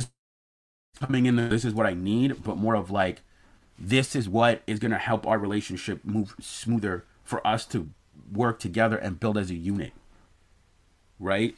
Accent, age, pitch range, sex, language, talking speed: American, 30-49, 95-115 Hz, male, English, 175 wpm